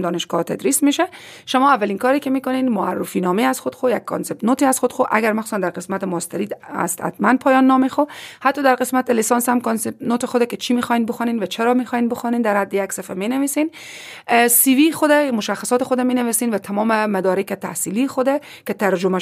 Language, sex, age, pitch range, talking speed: Persian, female, 30-49, 195-265 Hz, 195 wpm